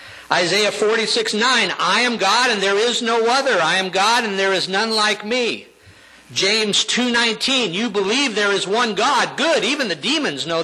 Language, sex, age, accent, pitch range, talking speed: English, male, 50-69, American, 155-220 Hz, 180 wpm